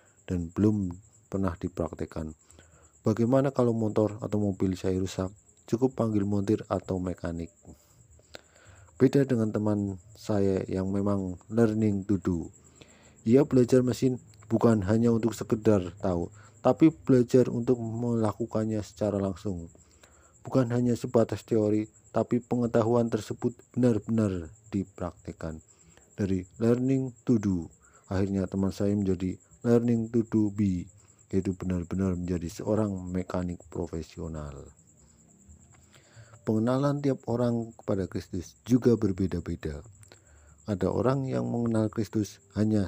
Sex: male